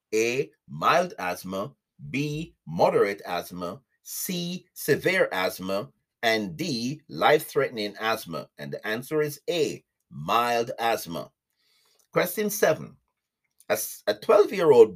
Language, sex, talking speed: English, male, 110 wpm